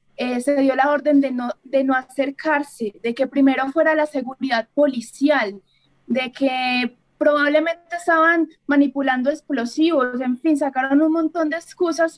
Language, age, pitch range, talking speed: Spanish, 20-39, 255-310 Hz, 150 wpm